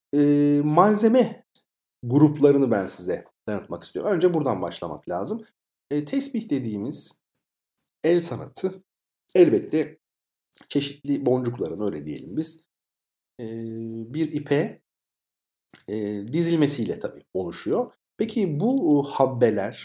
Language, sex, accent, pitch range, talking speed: Turkish, male, native, 105-160 Hz, 95 wpm